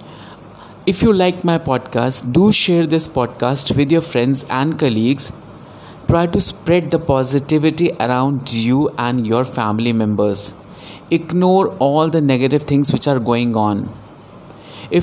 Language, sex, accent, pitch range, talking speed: Hindi, male, native, 125-155 Hz, 140 wpm